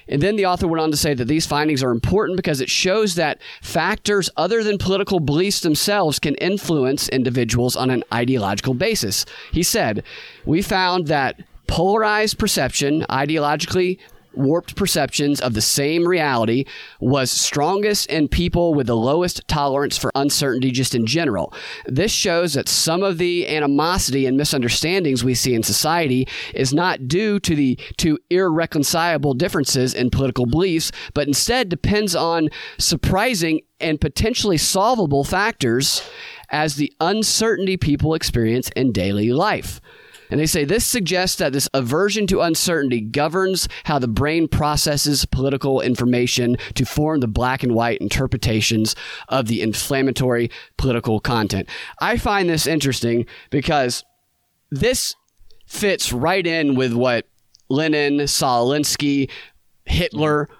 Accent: American